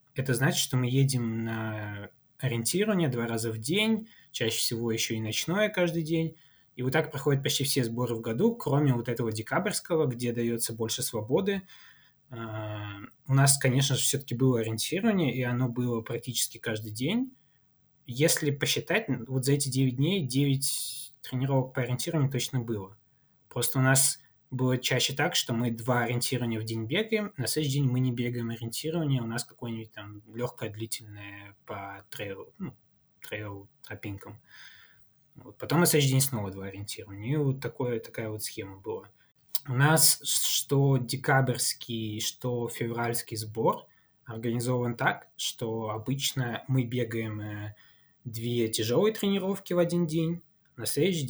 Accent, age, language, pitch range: native, 20-39, Russian, 115-145 Hz